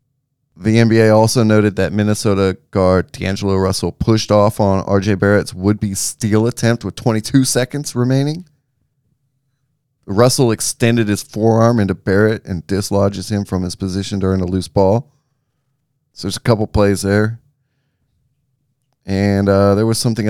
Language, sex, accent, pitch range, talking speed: English, male, American, 95-130 Hz, 140 wpm